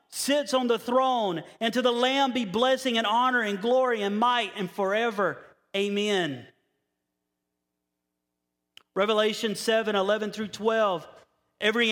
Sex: male